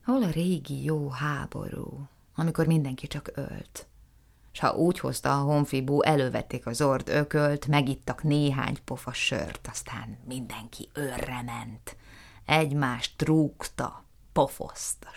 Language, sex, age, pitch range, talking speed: Hungarian, female, 30-49, 125-165 Hz, 120 wpm